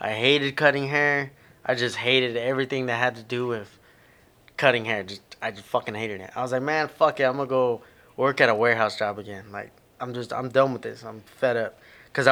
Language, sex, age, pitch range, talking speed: English, male, 20-39, 115-140 Hz, 230 wpm